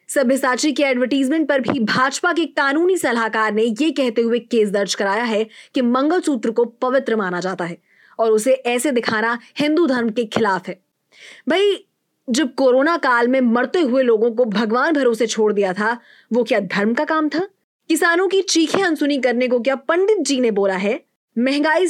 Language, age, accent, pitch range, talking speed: Marathi, 20-39, native, 225-300 Hz, 185 wpm